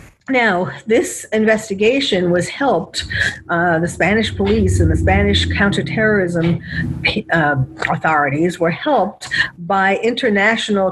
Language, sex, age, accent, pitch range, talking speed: English, female, 50-69, American, 170-220 Hz, 105 wpm